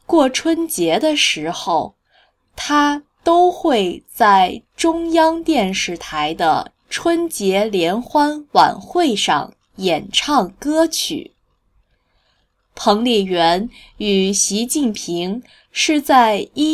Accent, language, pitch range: native, Chinese, 190-315 Hz